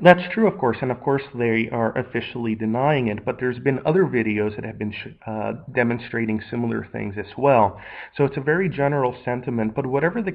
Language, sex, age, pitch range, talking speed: English, male, 30-49, 110-145 Hz, 205 wpm